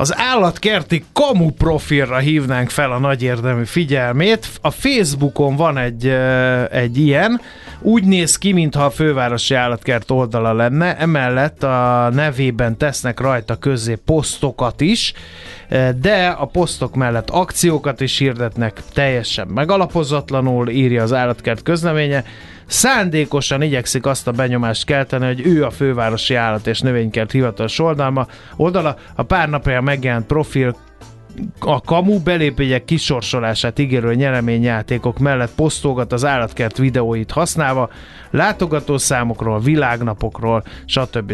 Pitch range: 120-155 Hz